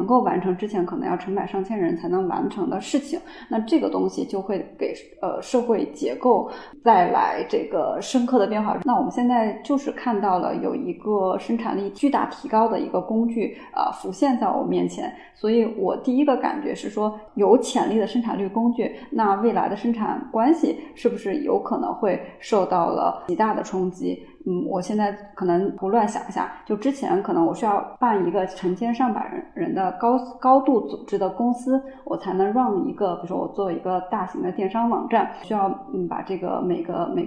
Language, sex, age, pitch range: Chinese, female, 20-39, 195-250 Hz